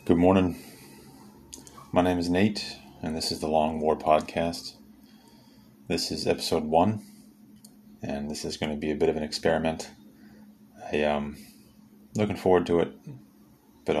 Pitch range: 75-95 Hz